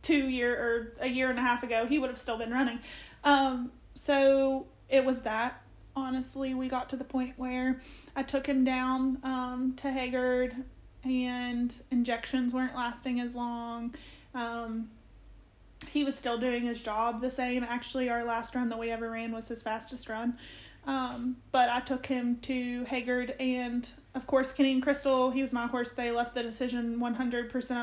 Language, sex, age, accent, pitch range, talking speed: English, female, 30-49, American, 240-265 Hz, 180 wpm